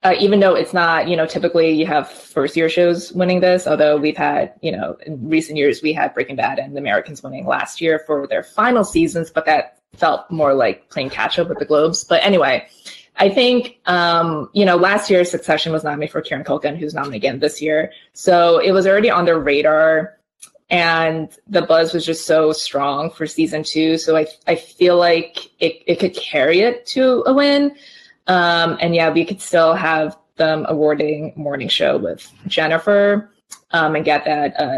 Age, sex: 20-39, female